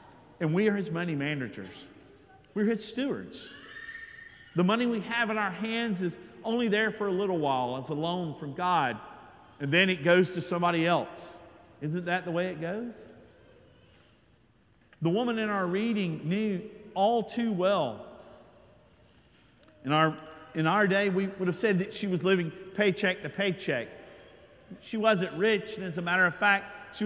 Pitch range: 155-205 Hz